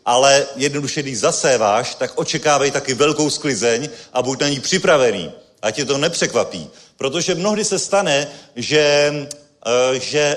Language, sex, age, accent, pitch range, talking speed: Czech, male, 40-59, native, 145-185 Hz, 140 wpm